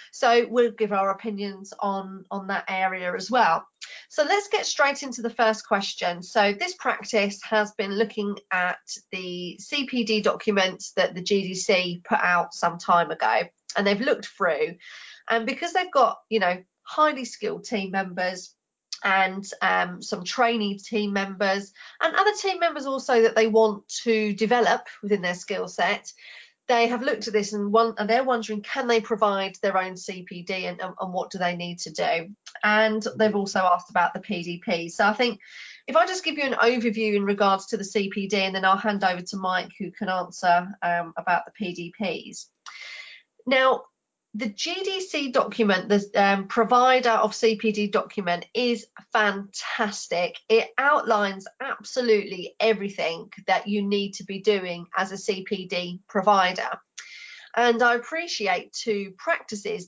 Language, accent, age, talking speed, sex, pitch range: English, British, 30-49, 165 wpm, female, 190-230 Hz